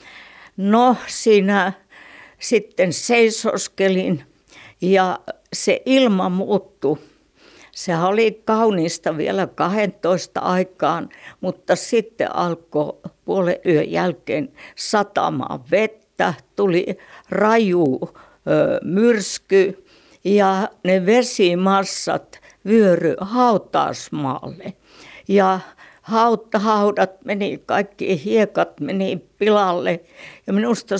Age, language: 60-79, Finnish